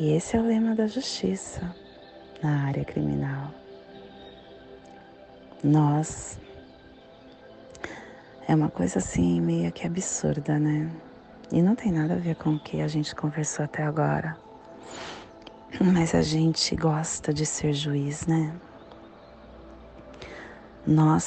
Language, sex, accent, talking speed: Portuguese, female, Brazilian, 120 wpm